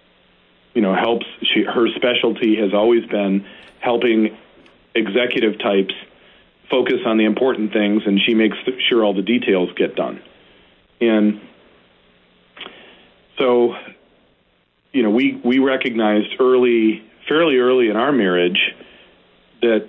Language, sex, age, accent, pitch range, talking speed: English, male, 40-59, American, 105-120 Hz, 120 wpm